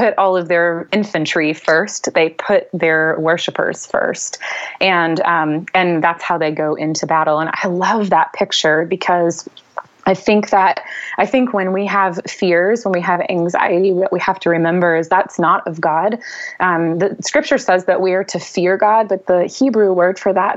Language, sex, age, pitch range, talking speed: English, female, 20-39, 165-195 Hz, 190 wpm